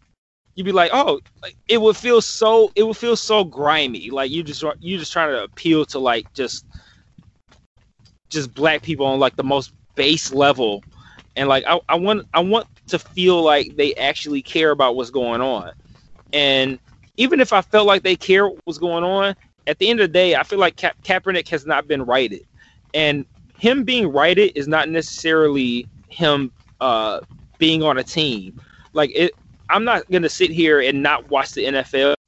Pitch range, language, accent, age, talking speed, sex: 135-180 Hz, English, American, 20-39, 190 wpm, male